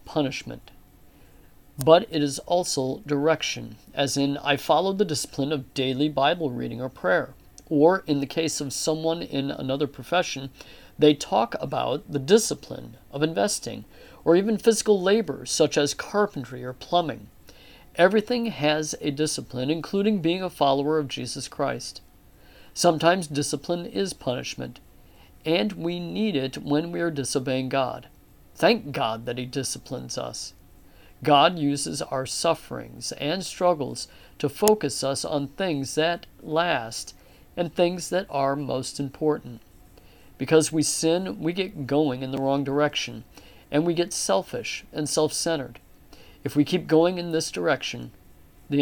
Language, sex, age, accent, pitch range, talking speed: English, male, 50-69, American, 130-165 Hz, 145 wpm